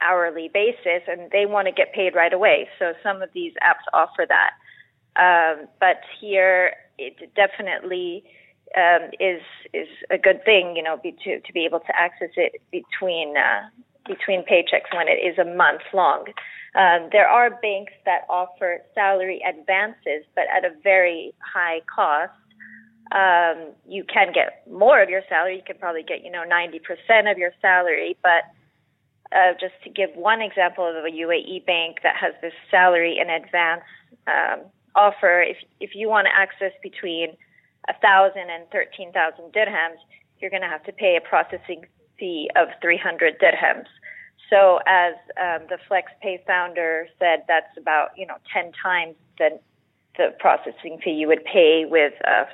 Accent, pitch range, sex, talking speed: American, 170-200 Hz, female, 165 wpm